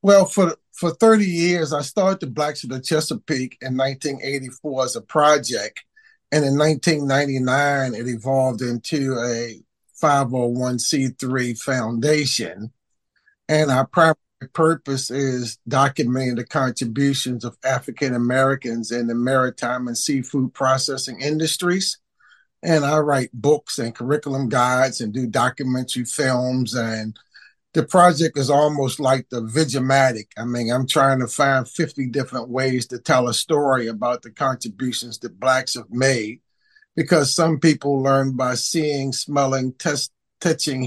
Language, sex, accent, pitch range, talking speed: English, male, American, 125-150 Hz, 130 wpm